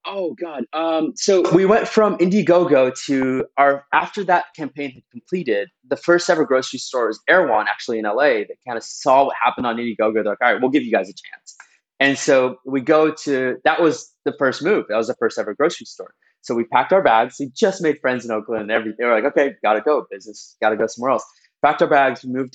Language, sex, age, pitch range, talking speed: English, male, 20-39, 120-155 Hz, 240 wpm